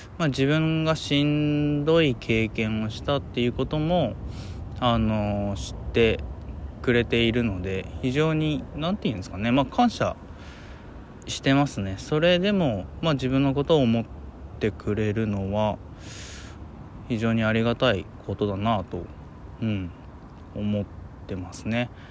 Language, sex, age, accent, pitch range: Japanese, male, 20-39, native, 95-135 Hz